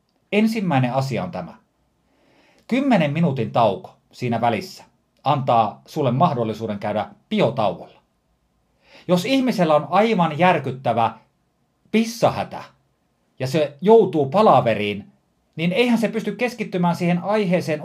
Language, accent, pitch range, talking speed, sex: Finnish, native, 125-180 Hz, 105 wpm, male